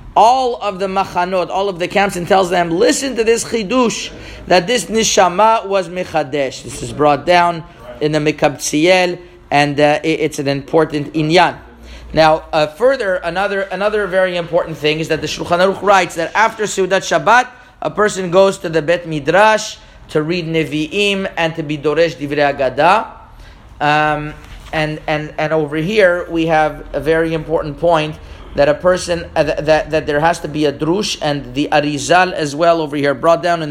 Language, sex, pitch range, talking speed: English, male, 150-180 Hz, 180 wpm